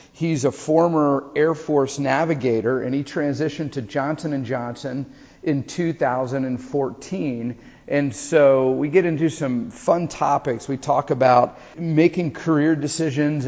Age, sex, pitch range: 40-59, male, 125-150 Hz